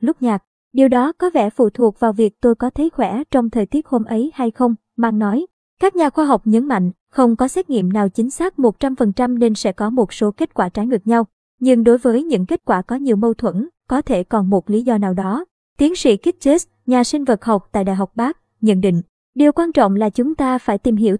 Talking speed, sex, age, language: 245 wpm, male, 20-39, Vietnamese